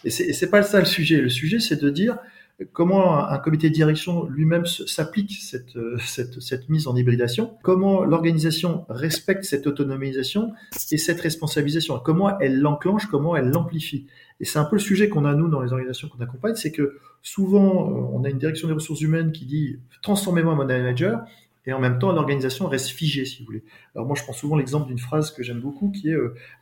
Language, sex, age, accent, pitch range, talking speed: French, male, 40-59, French, 135-175 Hz, 220 wpm